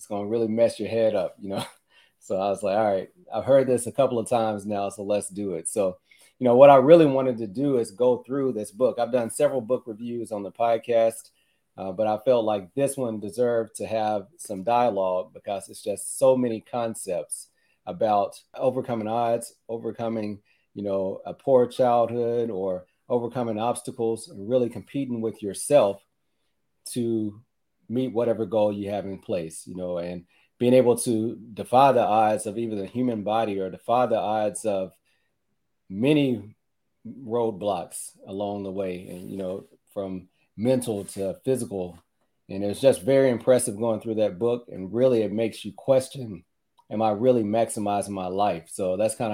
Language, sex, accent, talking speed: English, male, American, 180 wpm